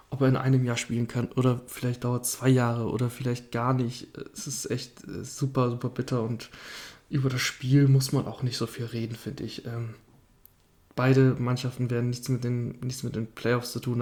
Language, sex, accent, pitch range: German, male, German, 120-130 Hz